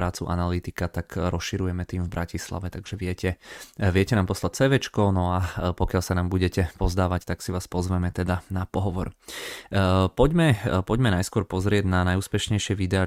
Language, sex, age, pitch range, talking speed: Czech, male, 20-39, 90-100 Hz, 155 wpm